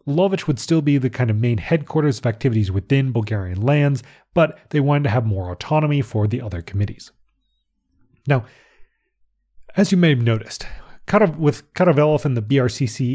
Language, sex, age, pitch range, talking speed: English, male, 30-49, 110-150 Hz, 170 wpm